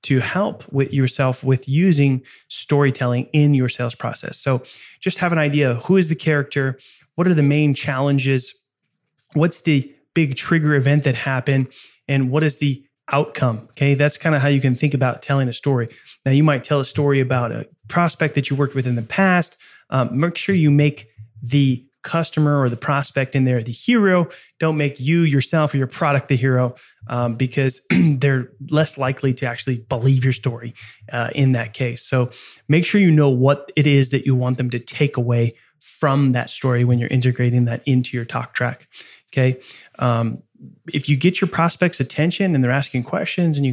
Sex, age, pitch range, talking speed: male, 20-39, 130-155 Hz, 195 wpm